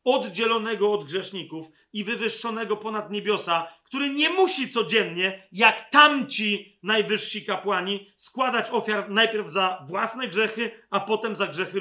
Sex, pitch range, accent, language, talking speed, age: male, 185-230 Hz, native, Polish, 125 wpm, 40-59